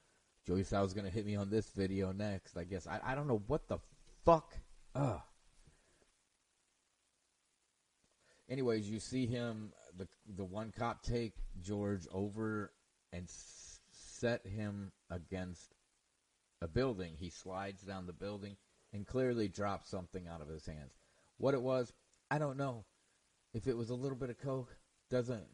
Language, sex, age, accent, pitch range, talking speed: English, male, 30-49, American, 95-125 Hz, 155 wpm